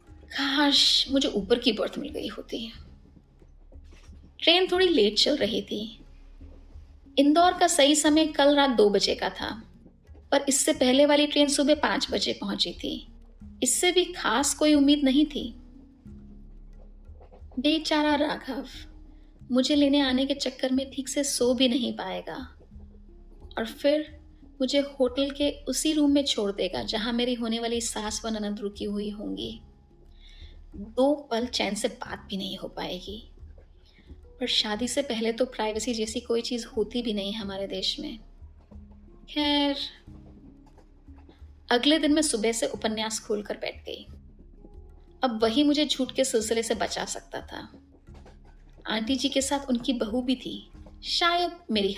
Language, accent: Hindi, native